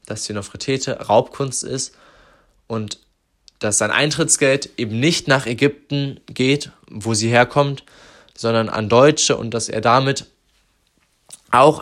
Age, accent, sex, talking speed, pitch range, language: 20-39, German, male, 125 wpm, 105-130 Hz, German